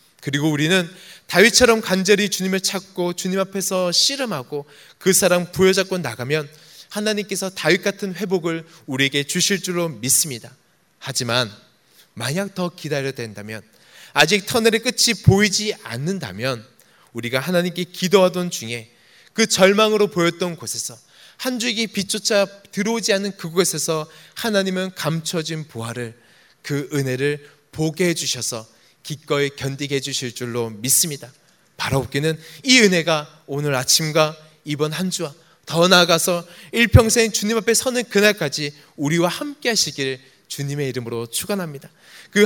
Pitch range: 140-190 Hz